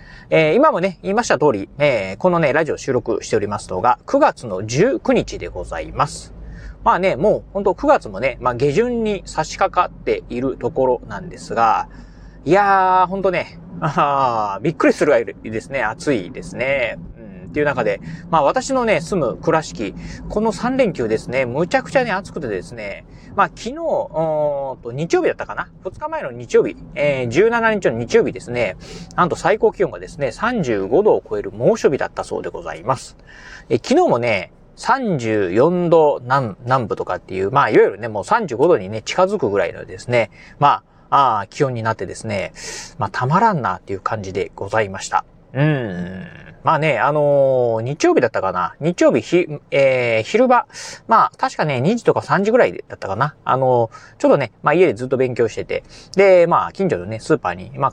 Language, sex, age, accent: Japanese, male, 30-49, native